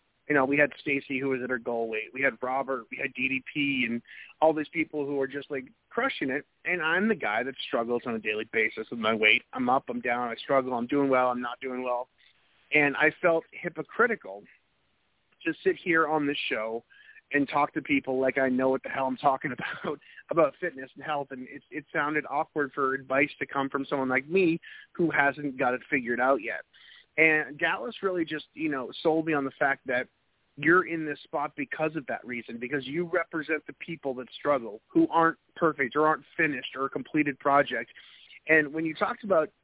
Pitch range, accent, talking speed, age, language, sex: 130-160 Hz, American, 215 wpm, 30-49, English, male